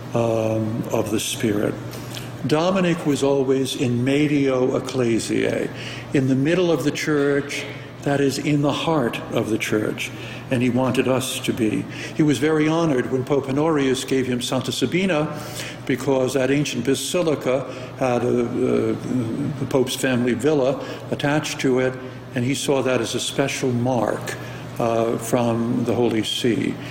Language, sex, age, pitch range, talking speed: English, male, 60-79, 120-140 Hz, 145 wpm